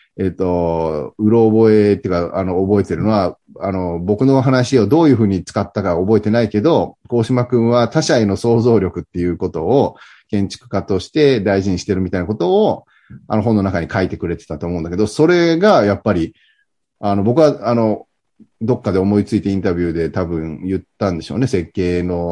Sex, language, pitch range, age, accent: male, Japanese, 95-130 Hz, 30-49, native